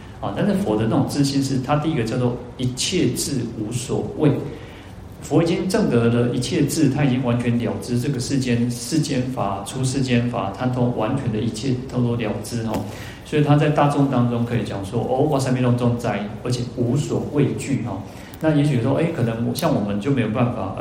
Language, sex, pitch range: Chinese, male, 110-135 Hz